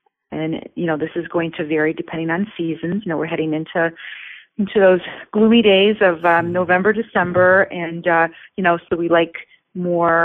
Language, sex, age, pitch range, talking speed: English, female, 30-49, 165-205 Hz, 185 wpm